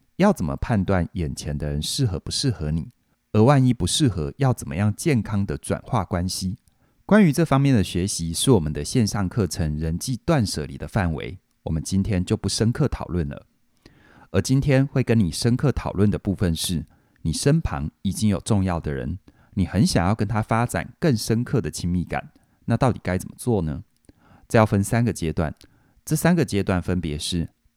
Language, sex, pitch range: Chinese, male, 85-115 Hz